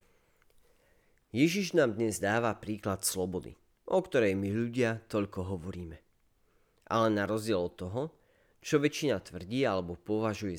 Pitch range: 90-125 Hz